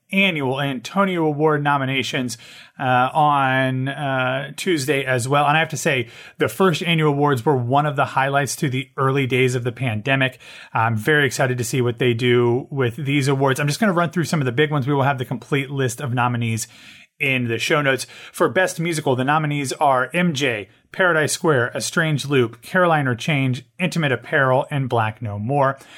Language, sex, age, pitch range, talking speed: English, male, 30-49, 125-155 Hz, 200 wpm